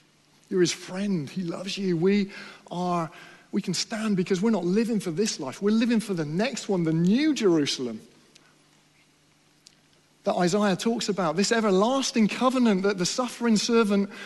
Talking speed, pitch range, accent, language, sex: 160 wpm, 150-205 Hz, British, English, male